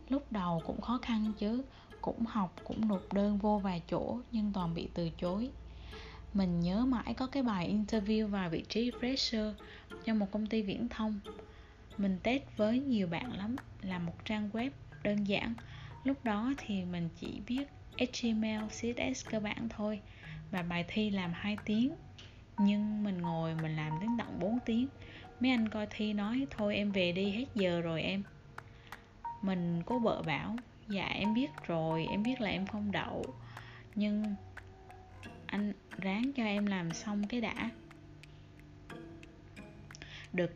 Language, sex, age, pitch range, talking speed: Vietnamese, female, 20-39, 180-230 Hz, 165 wpm